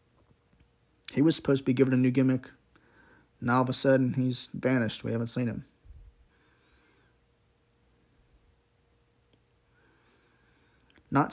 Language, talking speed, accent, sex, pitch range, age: English, 110 wpm, American, male, 120-140 Hz, 20-39